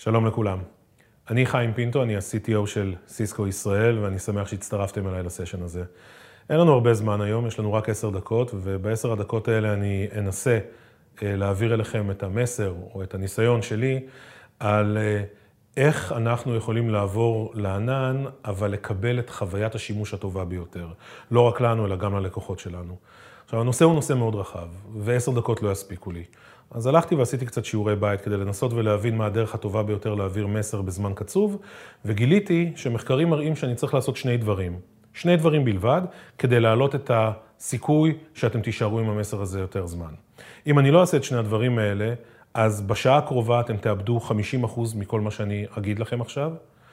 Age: 30-49